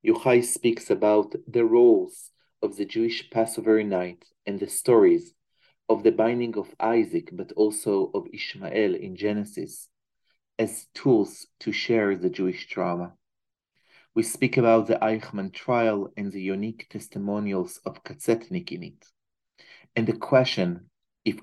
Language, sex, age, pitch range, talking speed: English, male, 40-59, 100-125 Hz, 135 wpm